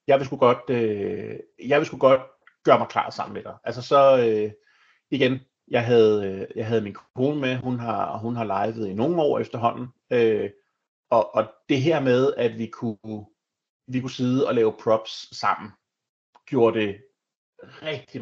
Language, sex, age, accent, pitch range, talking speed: Danish, male, 30-49, native, 110-130 Hz, 170 wpm